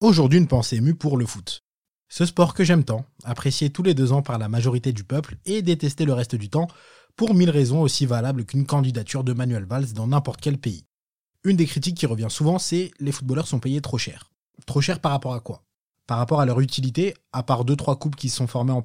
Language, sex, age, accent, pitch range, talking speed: French, male, 20-39, French, 125-155 Hz, 245 wpm